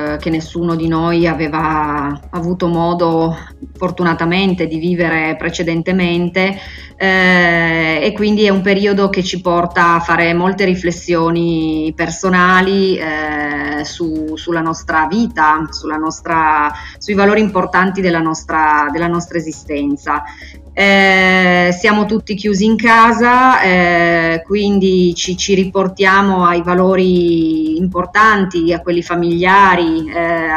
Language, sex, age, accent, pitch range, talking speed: Italian, female, 30-49, native, 165-190 Hz, 115 wpm